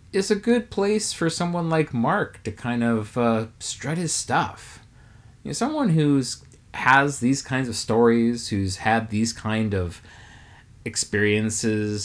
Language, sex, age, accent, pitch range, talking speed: English, male, 30-49, American, 100-135 Hz, 150 wpm